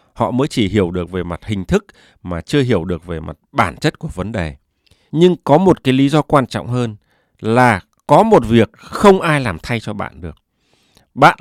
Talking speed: 215 wpm